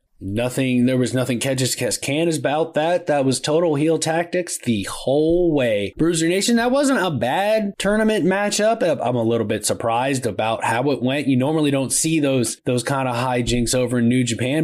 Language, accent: English, American